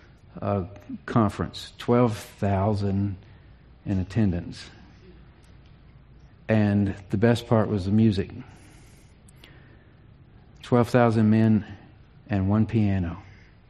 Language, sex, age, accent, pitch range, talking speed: English, male, 50-69, American, 100-120 Hz, 75 wpm